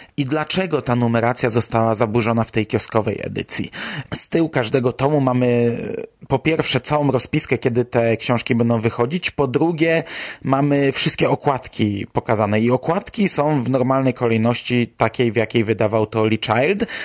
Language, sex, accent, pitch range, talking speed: Polish, male, native, 120-150 Hz, 150 wpm